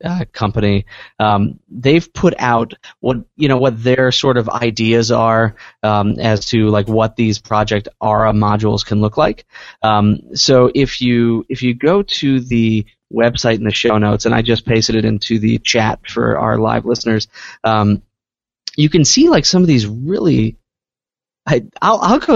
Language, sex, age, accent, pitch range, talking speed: English, male, 20-39, American, 110-140 Hz, 175 wpm